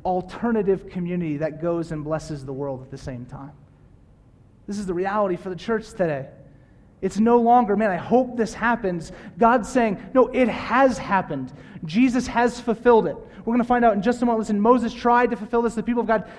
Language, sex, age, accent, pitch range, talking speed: English, male, 30-49, American, 145-215 Hz, 210 wpm